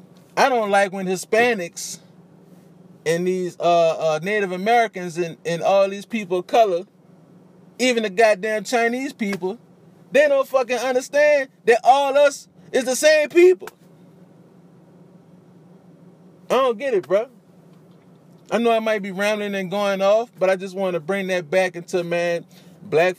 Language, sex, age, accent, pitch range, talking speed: English, male, 20-39, American, 170-185 Hz, 155 wpm